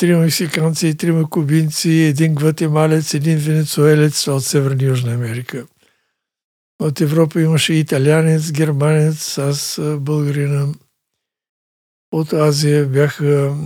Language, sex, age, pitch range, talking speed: Bulgarian, male, 60-79, 135-160 Hz, 100 wpm